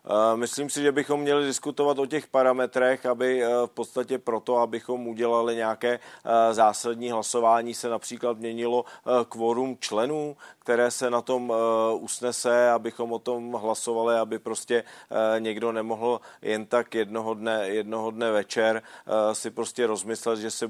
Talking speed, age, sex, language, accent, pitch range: 140 wpm, 40-59, male, Czech, native, 115-120 Hz